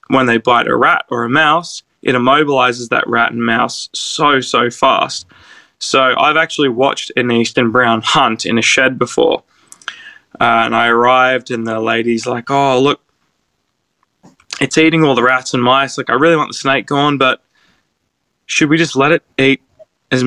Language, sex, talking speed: English, male, 180 wpm